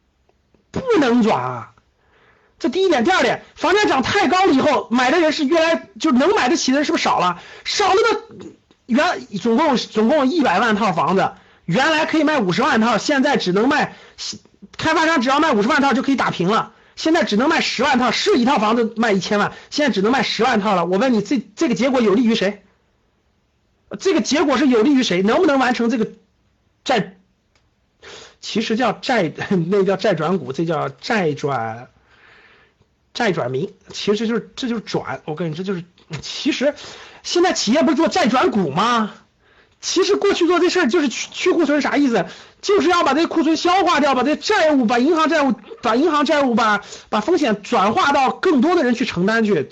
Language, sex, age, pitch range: Chinese, male, 50-69, 205-315 Hz